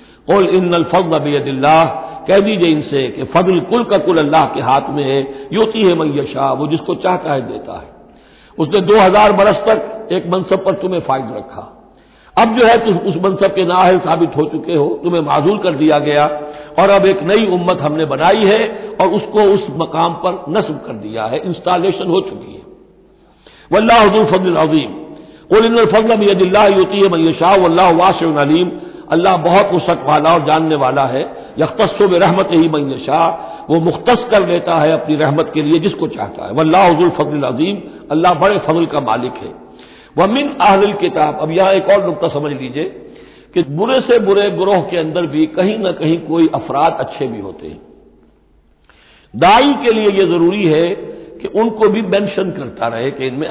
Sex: male